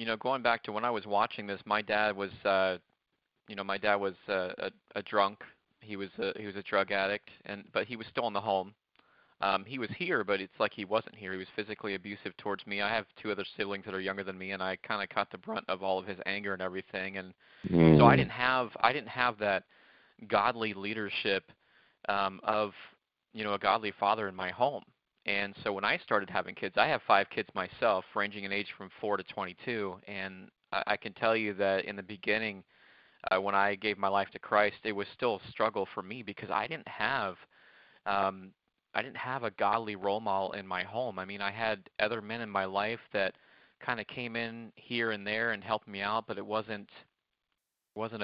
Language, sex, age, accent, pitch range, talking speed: English, male, 30-49, American, 95-110 Hz, 230 wpm